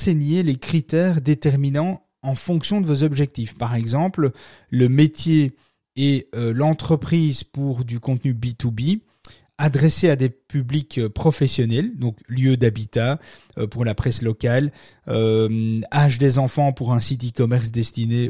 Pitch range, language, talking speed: 125-155 Hz, French, 140 wpm